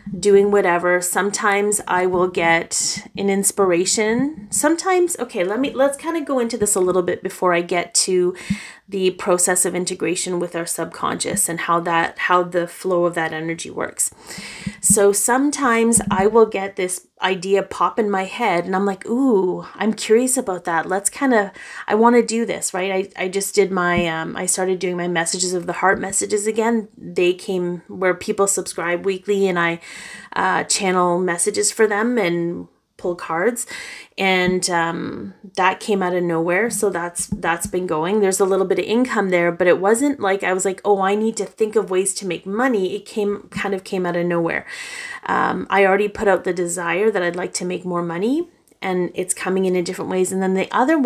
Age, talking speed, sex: 30-49, 200 wpm, female